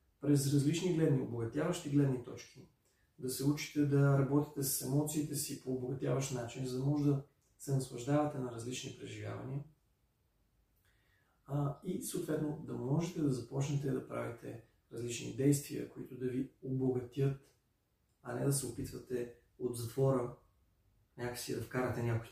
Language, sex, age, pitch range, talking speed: Bulgarian, male, 30-49, 115-145 Hz, 140 wpm